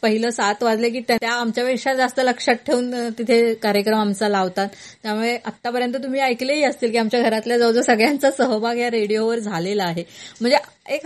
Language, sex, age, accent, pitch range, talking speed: Marathi, female, 30-49, native, 200-245 Hz, 70 wpm